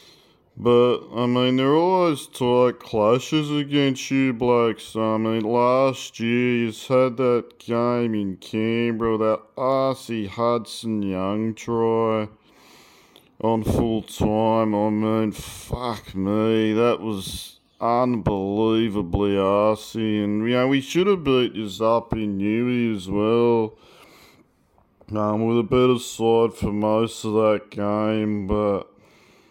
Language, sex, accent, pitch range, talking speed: English, male, Australian, 100-120 Hz, 120 wpm